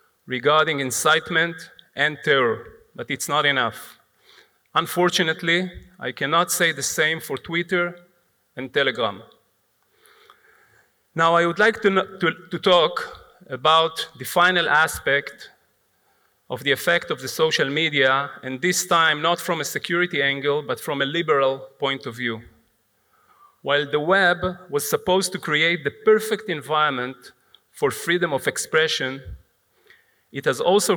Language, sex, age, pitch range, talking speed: Hebrew, male, 40-59, 140-185 Hz, 135 wpm